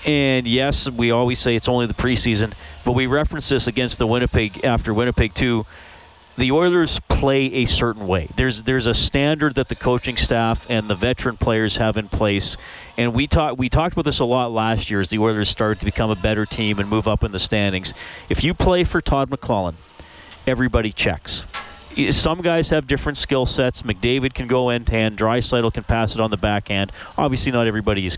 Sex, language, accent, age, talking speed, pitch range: male, English, American, 40-59, 205 wpm, 105-125 Hz